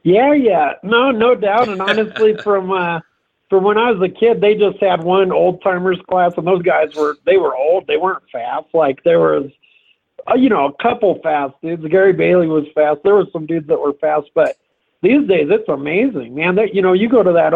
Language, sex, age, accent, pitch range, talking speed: English, male, 50-69, American, 155-190 Hz, 220 wpm